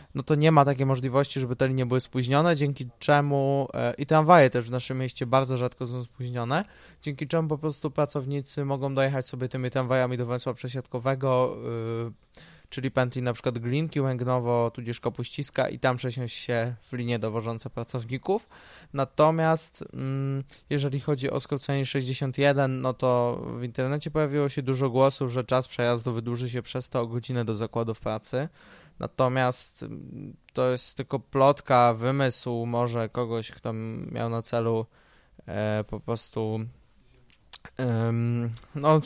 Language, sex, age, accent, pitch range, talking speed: Polish, male, 20-39, native, 120-140 Hz, 145 wpm